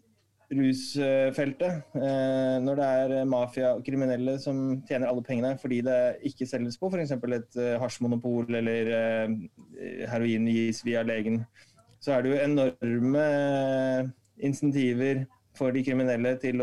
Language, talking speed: English, 135 wpm